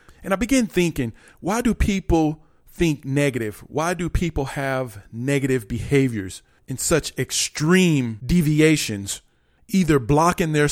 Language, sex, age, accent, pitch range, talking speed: English, male, 40-59, American, 125-170 Hz, 125 wpm